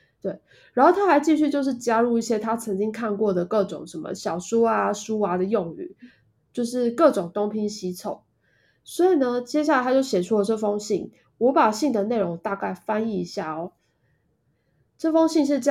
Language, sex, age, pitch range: Chinese, female, 20-39, 195-270 Hz